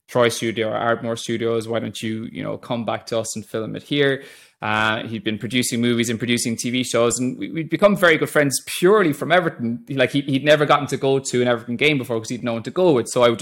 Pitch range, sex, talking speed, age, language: 115-150 Hz, male, 260 wpm, 20-39, English